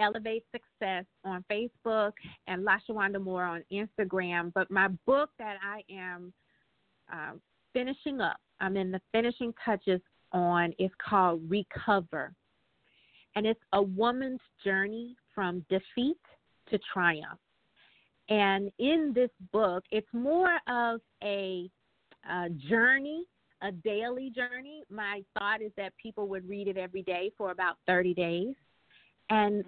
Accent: American